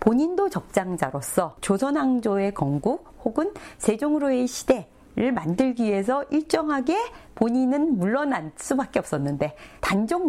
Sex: female